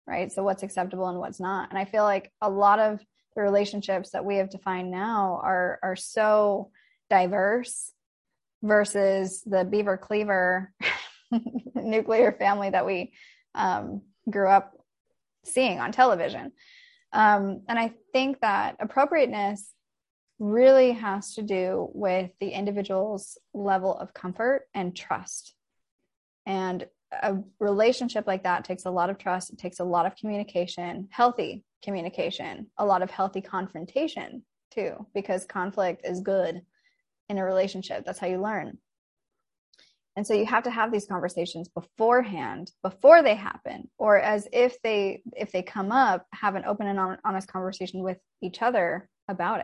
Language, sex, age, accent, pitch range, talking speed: English, female, 10-29, American, 190-225 Hz, 145 wpm